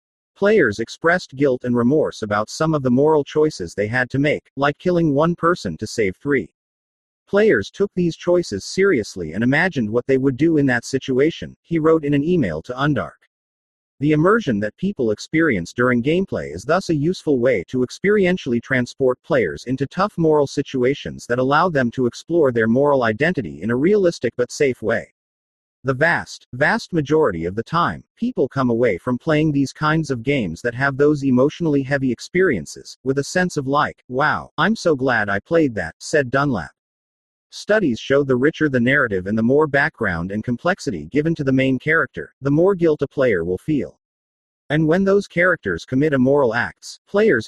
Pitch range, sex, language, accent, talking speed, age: 120-160 Hz, male, English, American, 185 wpm, 40-59